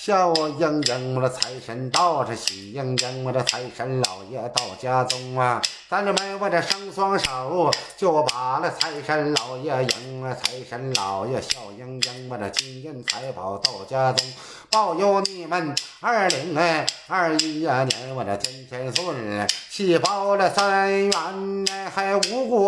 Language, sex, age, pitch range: Chinese, male, 50-69, 125-170 Hz